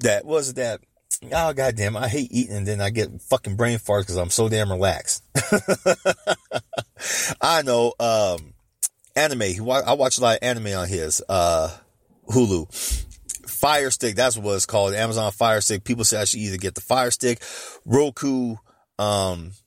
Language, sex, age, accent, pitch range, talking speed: English, male, 30-49, American, 100-125 Hz, 165 wpm